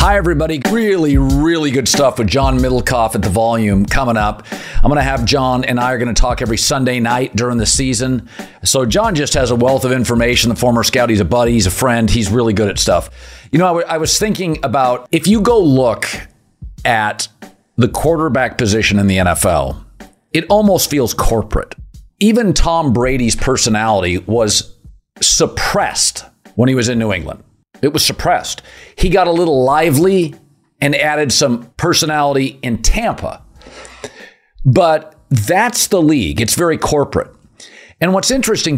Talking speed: 170 wpm